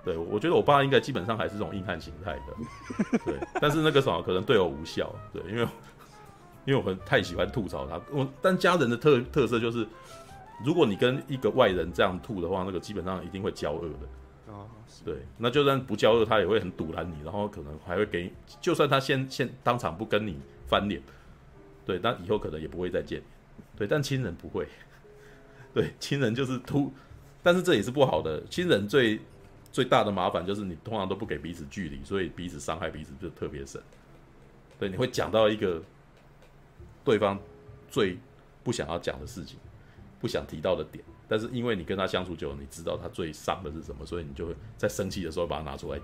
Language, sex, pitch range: Chinese, male, 80-135 Hz